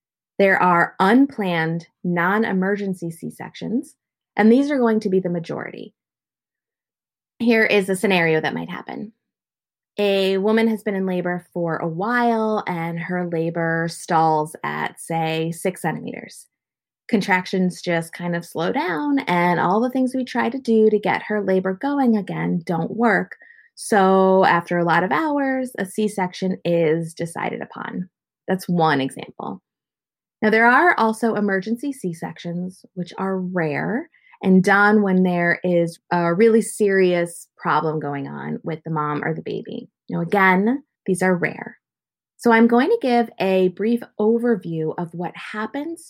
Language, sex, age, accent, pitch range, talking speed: English, female, 20-39, American, 170-230 Hz, 150 wpm